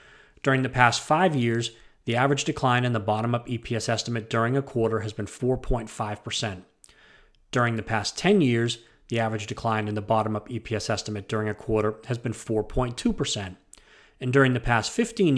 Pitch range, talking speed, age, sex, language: 115-145 Hz, 170 wpm, 30-49, male, English